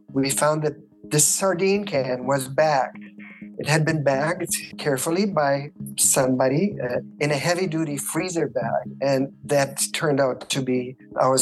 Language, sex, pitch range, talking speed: English, male, 125-155 Hz, 150 wpm